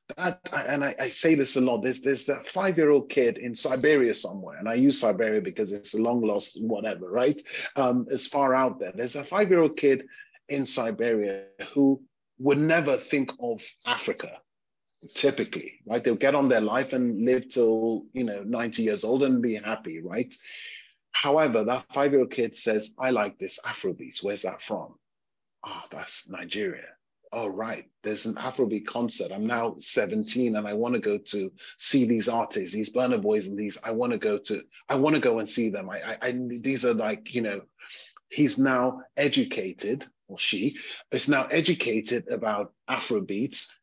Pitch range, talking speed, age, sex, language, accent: 115-140 Hz, 180 wpm, 30-49, male, English, British